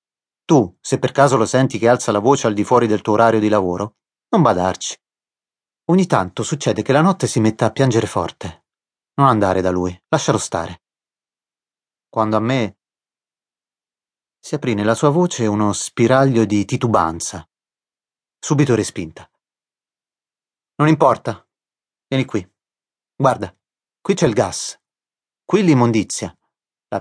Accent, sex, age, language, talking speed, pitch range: native, male, 30-49, Italian, 140 wpm, 105-150 Hz